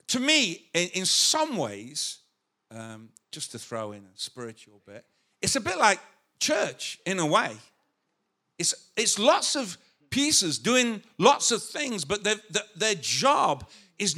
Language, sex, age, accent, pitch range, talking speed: English, male, 50-69, British, 125-190 Hz, 150 wpm